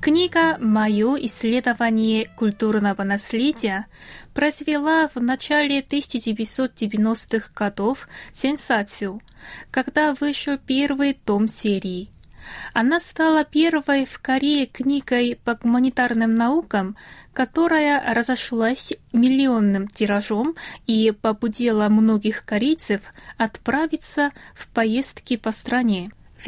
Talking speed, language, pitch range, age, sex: 90 wpm, Russian, 215-280 Hz, 20-39, female